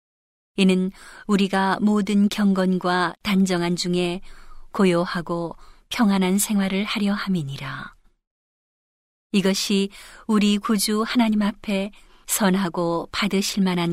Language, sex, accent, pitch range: Korean, female, native, 180-210 Hz